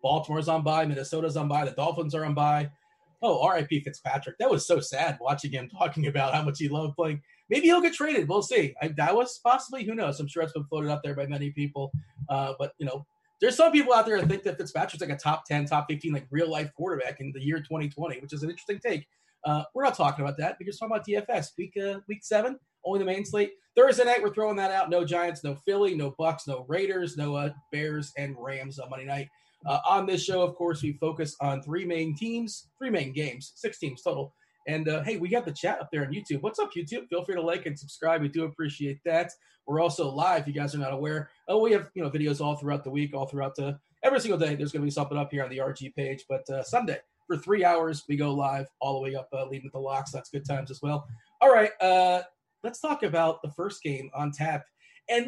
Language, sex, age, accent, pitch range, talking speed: English, male, 30-49, American, 145-185 Hz, 255 wpm